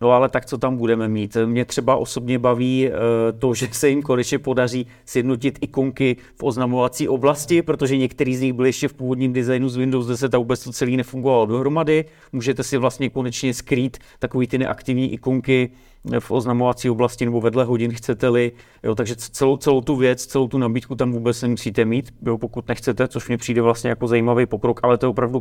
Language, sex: Czech, male